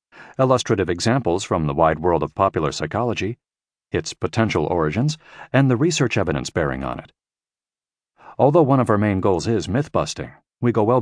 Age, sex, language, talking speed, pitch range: 50-69, male, English, 165 wpm, 90-135 Hz